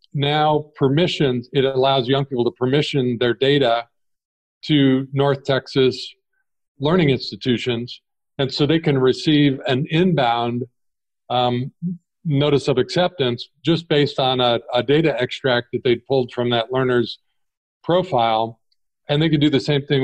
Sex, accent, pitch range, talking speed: male, American, 120-145 Hz, 145 wpm